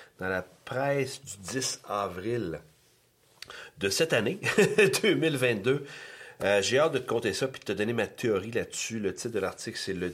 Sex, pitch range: male, 95-130 Hz